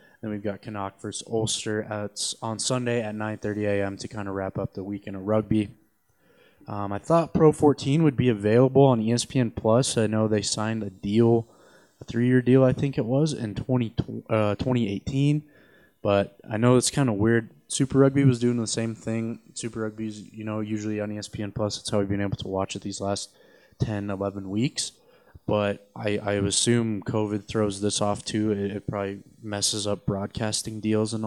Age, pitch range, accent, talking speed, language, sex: 20-39, 100-115 Hz, American, 195 wpm, English, male